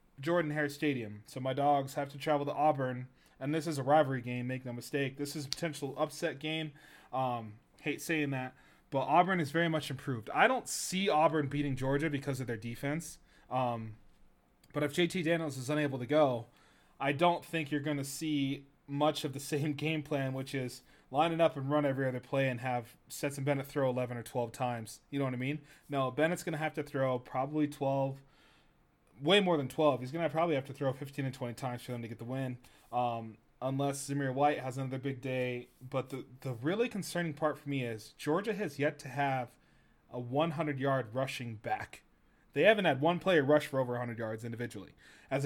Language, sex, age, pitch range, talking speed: English, male, 20-39, 130-155 Hz, 210 wpm